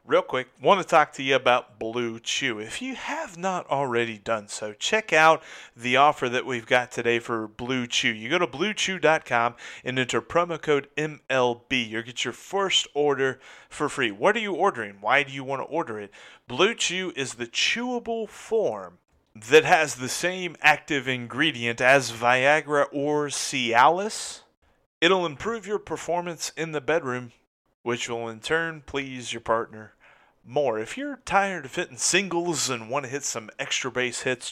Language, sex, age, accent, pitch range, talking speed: English, male, 30-49, American, 120-165 Hz, 175 wpm